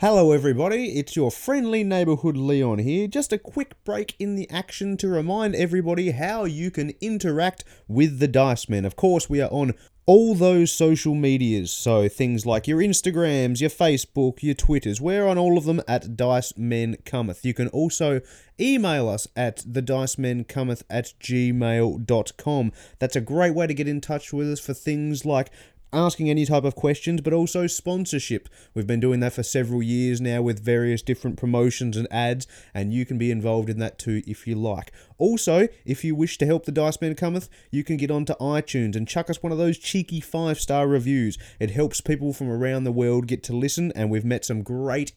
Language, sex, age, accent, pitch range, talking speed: English, male, 30-49, Australian, 120-165 Hz, 195 wpm